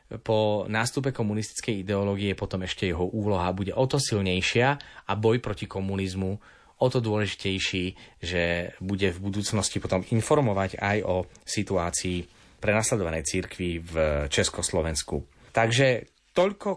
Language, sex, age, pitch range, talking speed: Slovak, male, 30-49, 110-140 Hz, 120 wpm